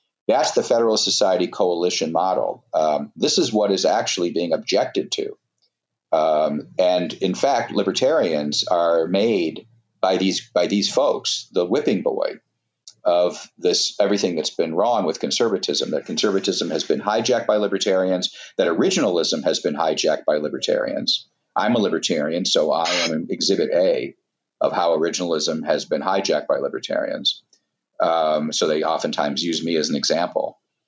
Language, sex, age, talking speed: English, male, 50-69, 150 wpm